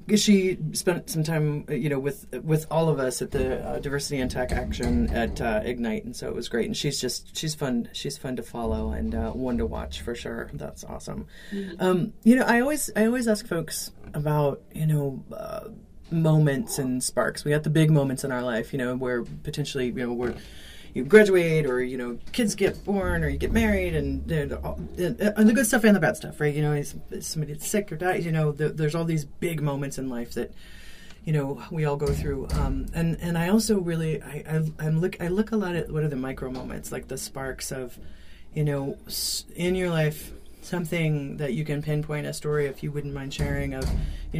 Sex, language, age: female, English, 30-49